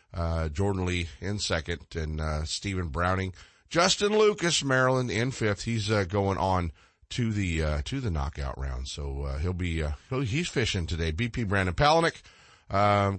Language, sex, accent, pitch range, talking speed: English, male, American, 80-115 Hz, 175 wpm